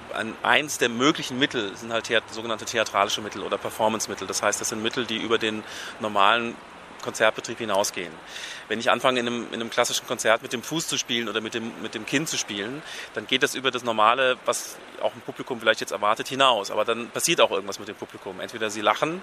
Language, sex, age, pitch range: German, male, 30-49, 115-130 Hz